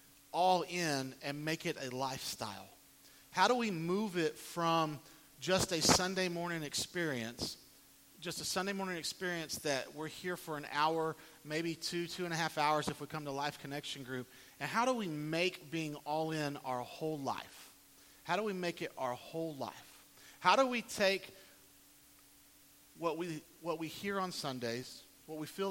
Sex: male